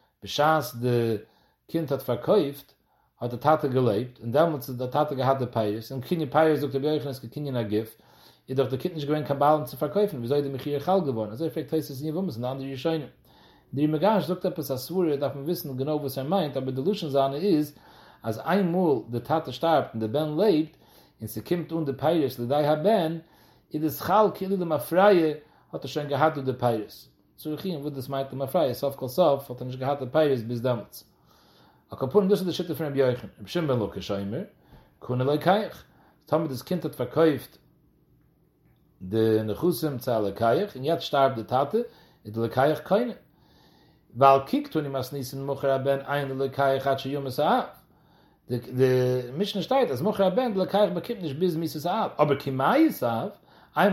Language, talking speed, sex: English, 95 wpm, male